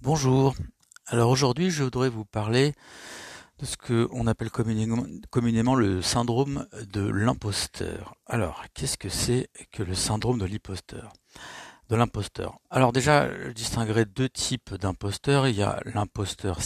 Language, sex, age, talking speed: French, male, 60-79, 135 wpm